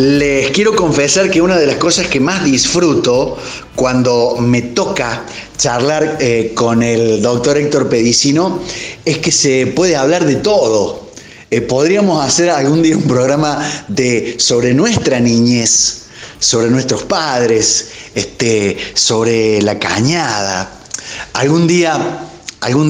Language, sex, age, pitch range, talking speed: Spanish, male, 30-49, 110-145 Hz, 120 wpm